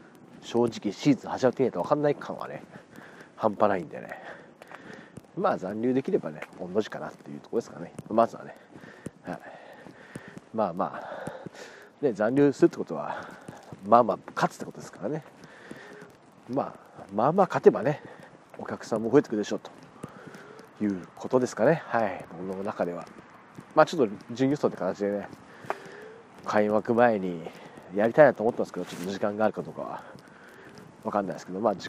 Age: 40-59